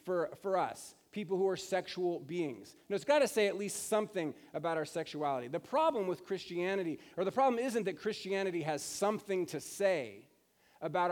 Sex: male